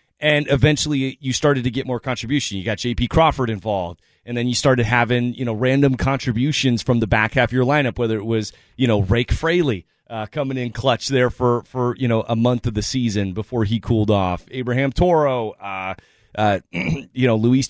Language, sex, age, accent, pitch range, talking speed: English, male, 30-49, American, 115-140 Hz, 205 wpm